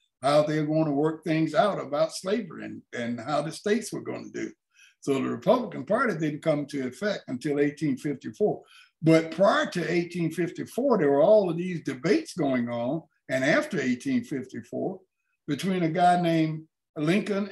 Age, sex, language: 60-79, male, English